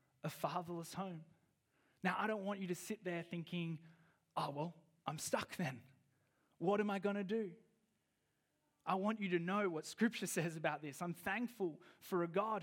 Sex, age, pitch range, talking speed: male, 20-39, 170-210 Hz, 180 wpm